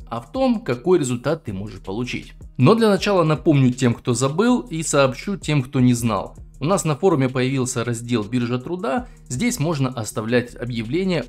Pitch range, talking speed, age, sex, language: 120-165 Hz, 175 wpm, 20-39, male, Russian